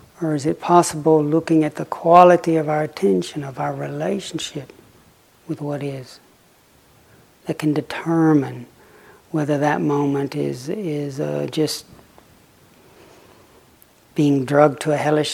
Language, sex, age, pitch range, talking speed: English, male, 60-79, 145-160 Hz, 125 wpm